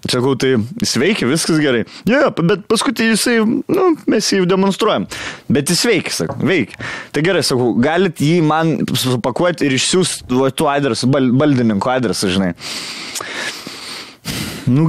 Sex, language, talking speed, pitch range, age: male, English, 140 wpm, 115-160 Hz, 20-39